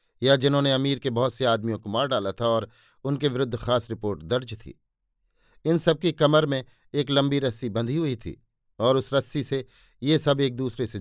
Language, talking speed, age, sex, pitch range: Hindi, 200 wpm, 50-69, male, 115-140 Hz